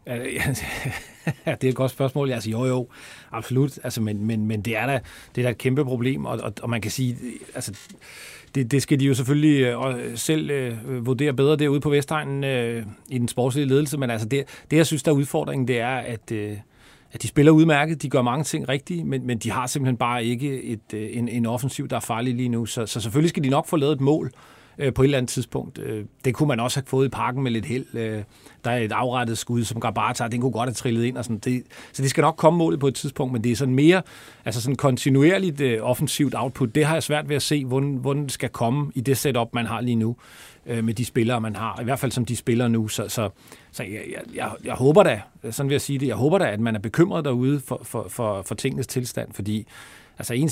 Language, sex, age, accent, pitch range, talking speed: Danish, male, 40-59, native, 115-140 Hz, 245 wpm